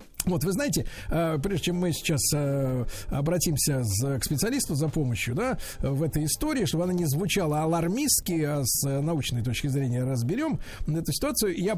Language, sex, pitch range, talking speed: Russian, male, 140-180 Hz, 155 wpm